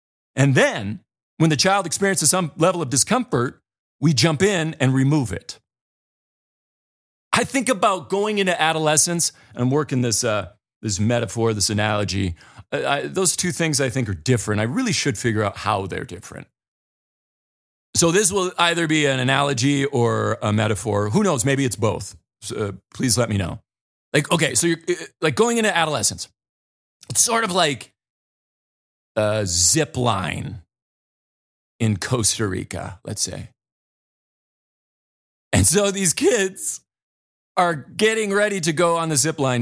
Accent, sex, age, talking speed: American, male, 40-59, 155 wpm